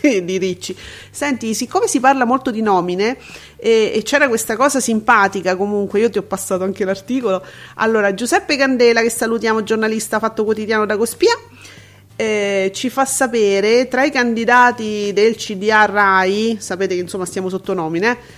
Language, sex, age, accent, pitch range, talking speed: Italian, female, 40-59, native, 215-265 Hz, 155 wpm